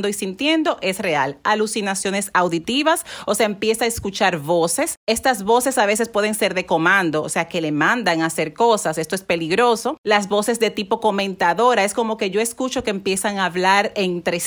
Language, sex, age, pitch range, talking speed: Spanish, female, 40-59, 185-225 Hz, 190 wpm